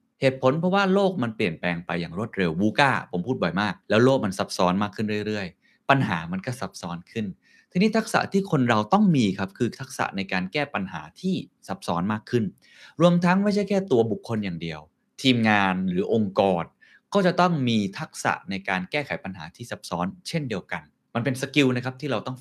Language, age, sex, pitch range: Thai, 20-39, male, 105-140 Hz